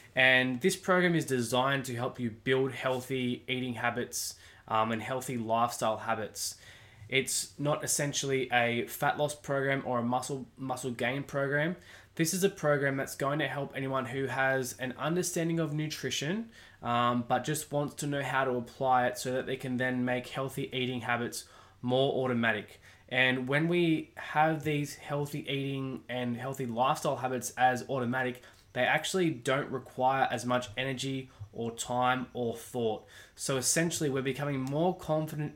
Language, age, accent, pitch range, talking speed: English, 20-39, Australian, 120-145 Hz, 160 wpm